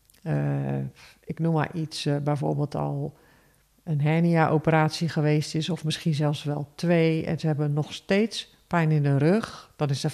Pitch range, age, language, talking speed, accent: 150-170 Hz, 50-69, Dutch, 170 wpm, Dutch